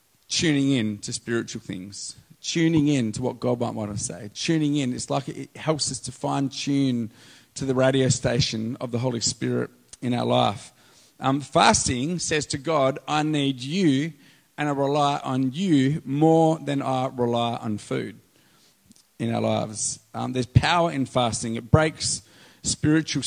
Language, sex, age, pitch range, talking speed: English, male, 40-59, 120-145 Hz, 170 wpm